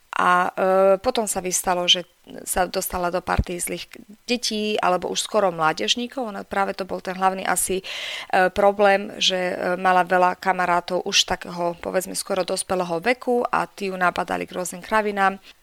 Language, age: Slovak, 30-49